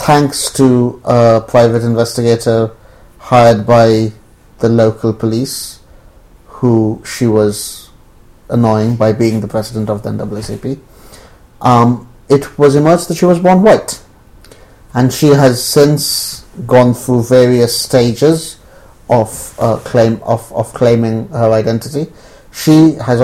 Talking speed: 125 wpm